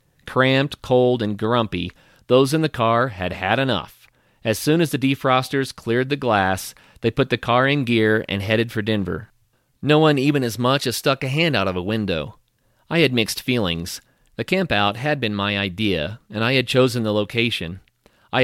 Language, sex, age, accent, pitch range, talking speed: English, male, 40-59, American, 105-135 Hz, 195 wpm